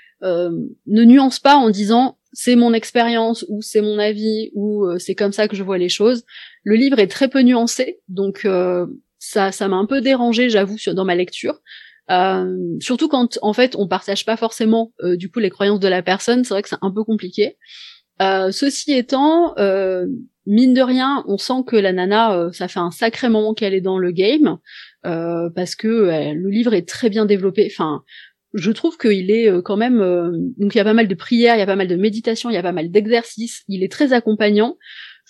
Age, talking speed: 20-39, 225 wpm